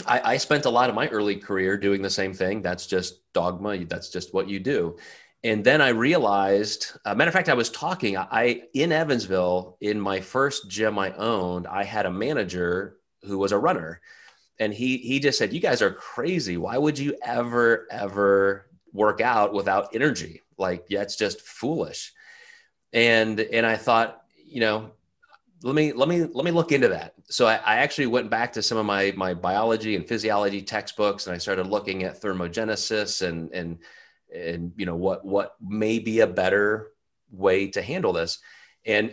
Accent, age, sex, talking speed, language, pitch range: American, 30-49, male, 190 wpm, English, 95-115 Hz